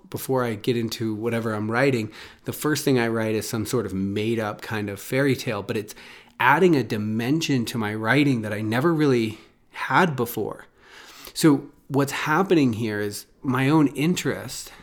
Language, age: English, 30-49